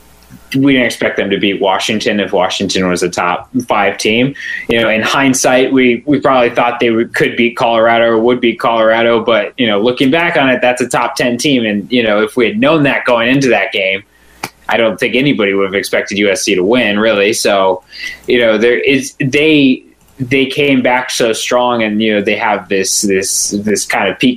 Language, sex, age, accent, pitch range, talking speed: English, male, 20-39, American, 105-130 Hz, 210 wpm